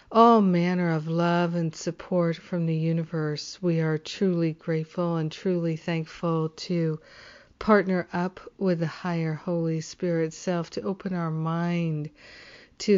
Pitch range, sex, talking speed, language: 165-185 Hz, female, 140 wpm, English